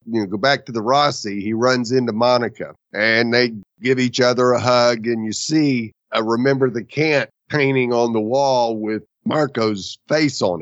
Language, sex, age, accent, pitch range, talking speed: English, male, 50-69, American, 115-155 Hz, 180 wpm